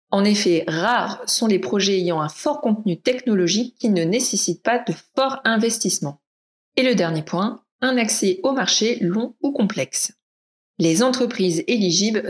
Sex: female